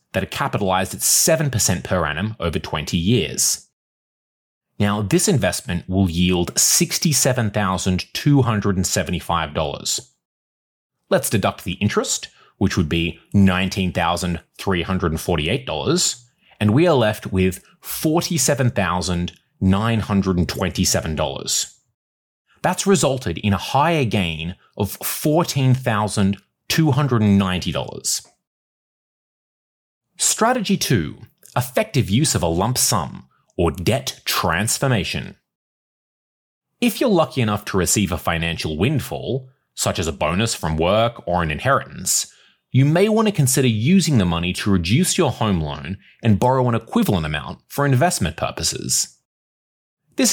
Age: 30-49